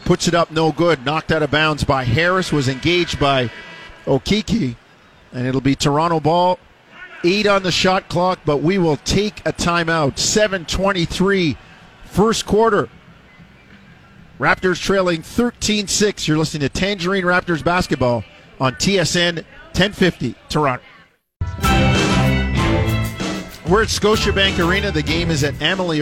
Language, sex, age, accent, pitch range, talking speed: English, male, 50-69, American, 145-185 Hz, 130 wpm